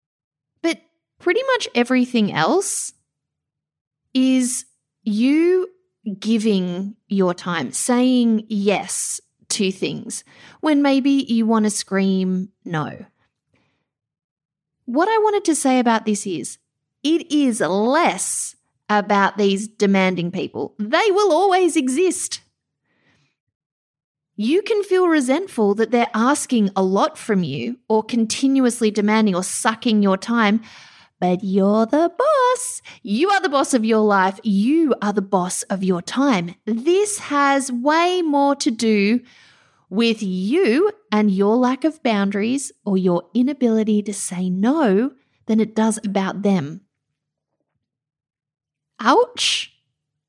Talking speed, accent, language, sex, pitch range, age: 120 wpm, Australian, English, female, 185-275 Hz, 30-49